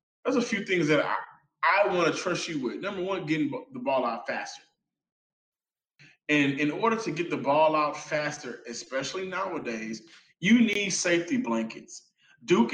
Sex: male